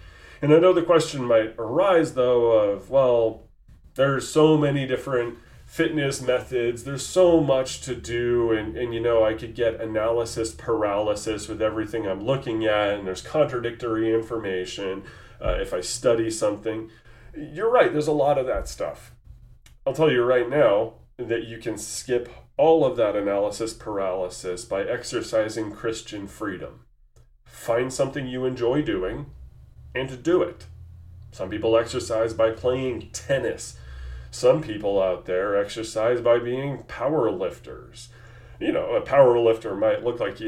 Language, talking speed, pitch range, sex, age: English, 155 wpm, 105-125 Hz, male, 30-49